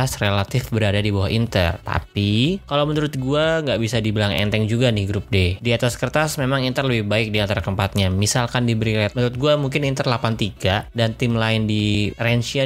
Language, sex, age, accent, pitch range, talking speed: Indonesian, male, 20-39, native, 105-130 Hz, 185 wpm